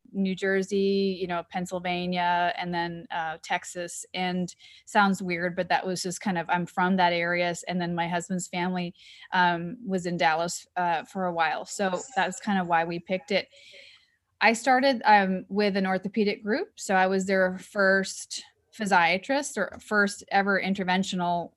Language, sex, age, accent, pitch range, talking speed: English, female, 20-39, American, 180-210 Hz, 165 wpm